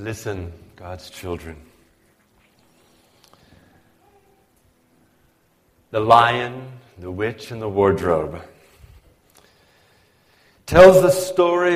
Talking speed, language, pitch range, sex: 65 wpm, English, 100-150 Hz, male